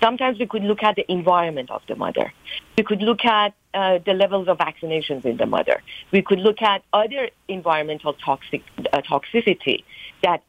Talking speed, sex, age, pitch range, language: 185 wpm, female, 50-69, 170-220 Hz, English